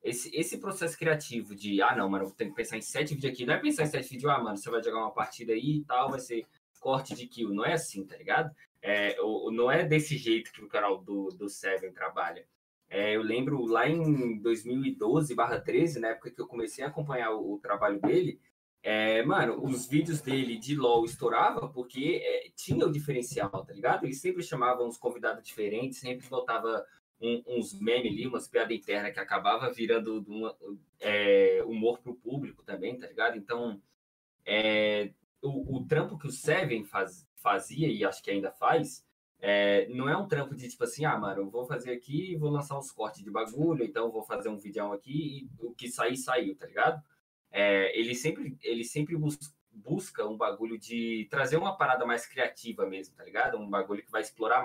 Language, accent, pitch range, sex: Portuguese, Brazilian, 110-155 Hz, male